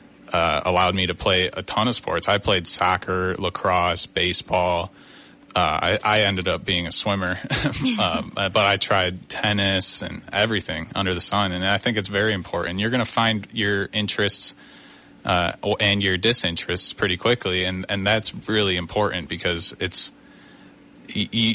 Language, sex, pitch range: English, male, 90-105 Hz